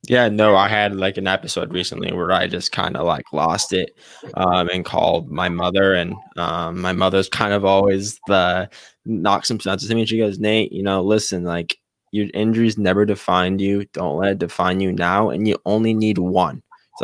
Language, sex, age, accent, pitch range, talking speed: English, male, 10-29, American, 95-110 Hz, 205 wpm